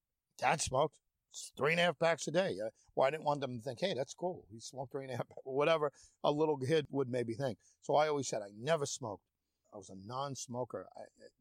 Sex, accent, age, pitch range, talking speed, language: male, American, 40-59, 115-145 Hz, 245 wpm, English